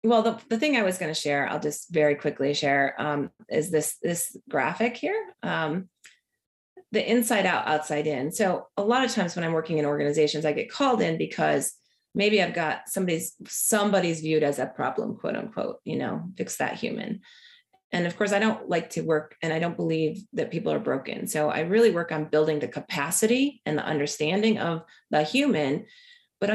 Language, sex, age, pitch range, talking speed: English, female, 30-49, 155-225 Hz, 200 wpm